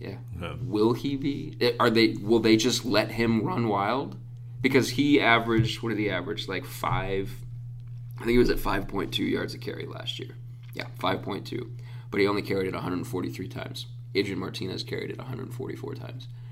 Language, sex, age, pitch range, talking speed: English, male, 20-39, 105-120 Hz, 175 wpm